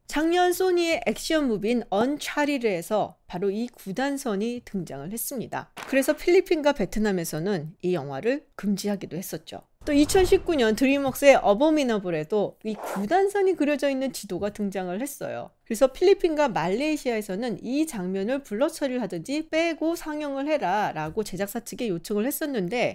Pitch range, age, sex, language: 195-295 Hz, 40-59, female, Korean